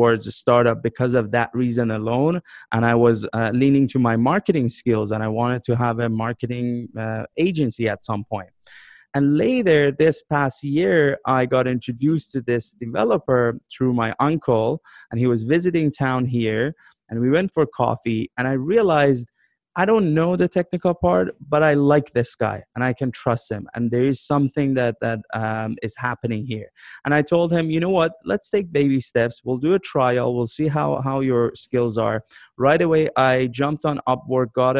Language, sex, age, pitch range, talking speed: English, male, 30-49, 115-145 Hz, 195 wpm